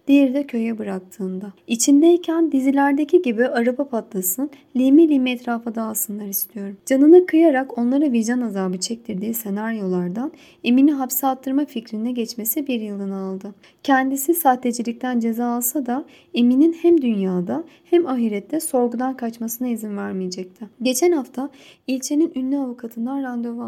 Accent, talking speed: native, 125 wpm